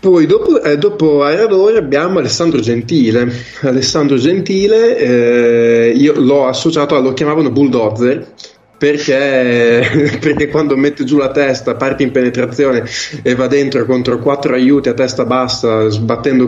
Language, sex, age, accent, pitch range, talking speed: Italian, male, 20-39, native, 115-135 Hz, 140 wpm